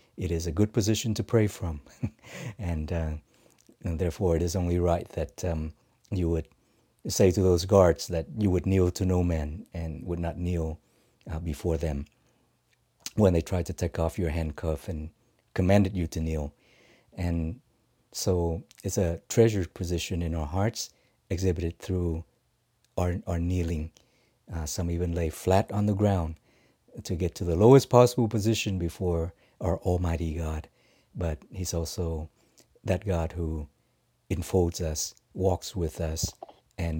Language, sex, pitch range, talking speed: English, male, 85-100 Hz, 155 wpm